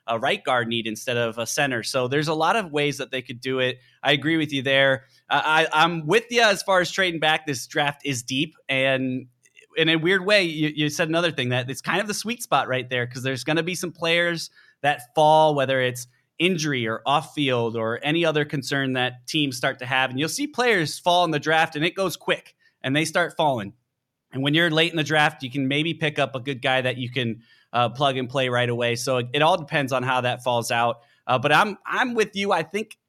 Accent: American